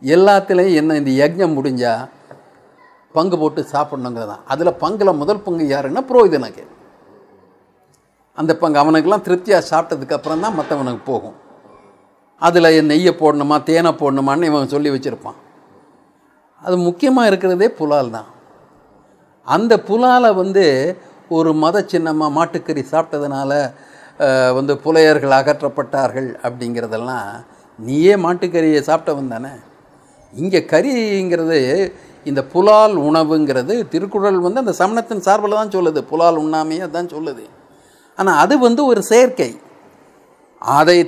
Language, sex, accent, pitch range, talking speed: Tamil, male, native, 145-185 Hz, 110 wpm